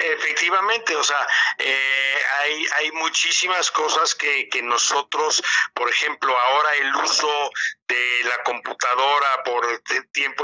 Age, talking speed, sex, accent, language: 50-69, 120 wpm, male, Mexican, Spanish